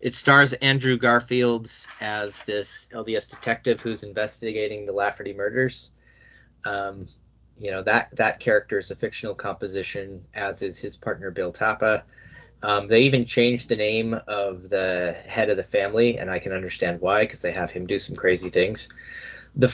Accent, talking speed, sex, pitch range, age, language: American, 165 wpm, male, 105-135 Hz, 20-39, English